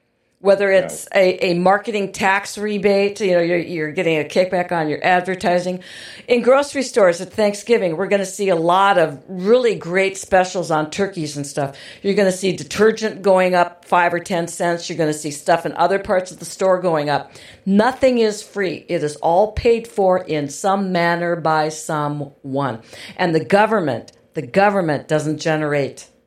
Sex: female